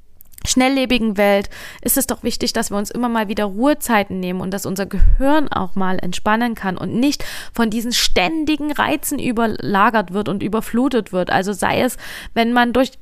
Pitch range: 195-245 Hz